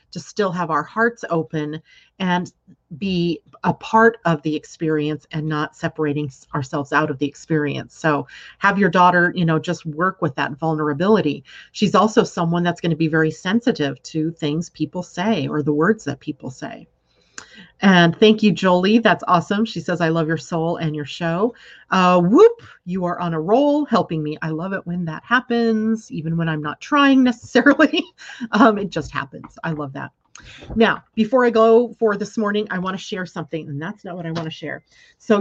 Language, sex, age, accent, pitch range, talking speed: English, female, 40-59, American, 155-200 Hz, 195 wpm